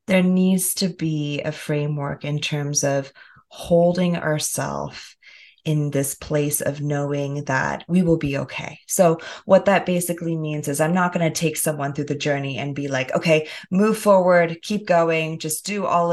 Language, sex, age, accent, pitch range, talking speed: English, female, 20-39, American, 155-190 Hz, 175 wpm